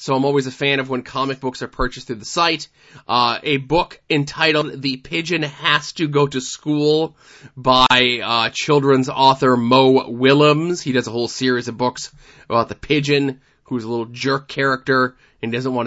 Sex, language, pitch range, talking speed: male, English, 120-145 Hz, 185 wpm